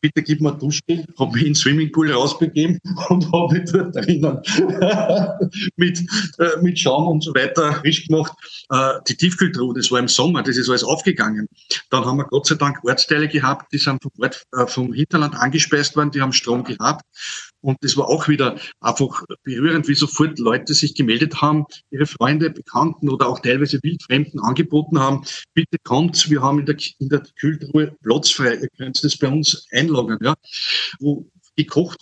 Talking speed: 185 wpm